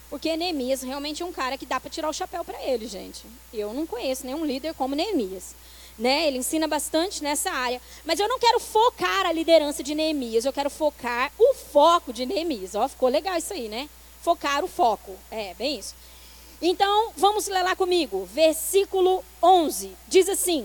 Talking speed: 190 wpm